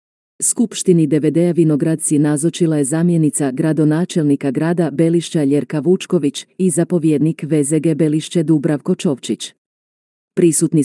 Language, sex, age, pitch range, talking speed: Croatian, female, 40-59, 150-170 Hz, 100 wpm